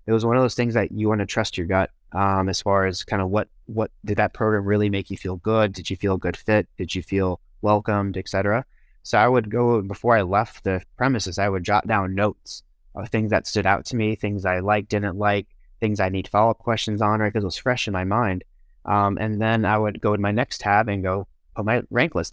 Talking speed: 260 wpm